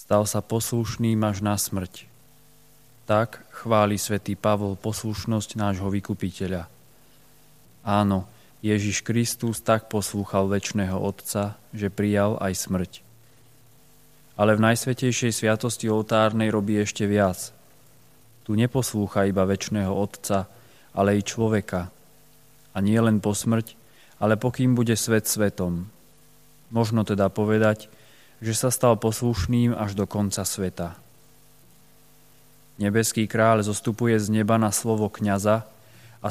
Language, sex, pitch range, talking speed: Slovak, male, 105-120 Hz, 115 wpm